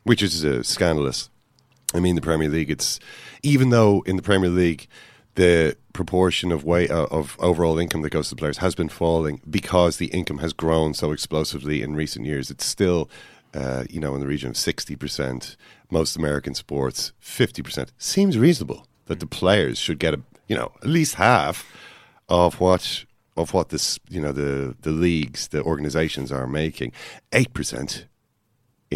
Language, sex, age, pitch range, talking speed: English, male, 40-59, 70-85 Hz, 170 wpm